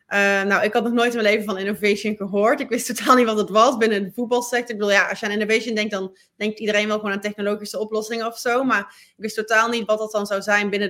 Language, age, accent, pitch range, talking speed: Dutch, 20-39, Dutch, 195-225 Hz, 280 wpm